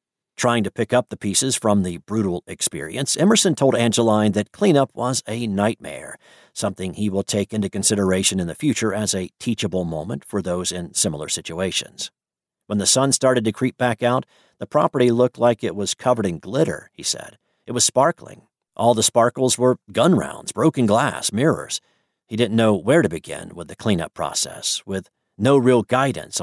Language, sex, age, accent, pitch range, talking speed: English, male, 50-69, American, 100-125 Hz, 185 wpm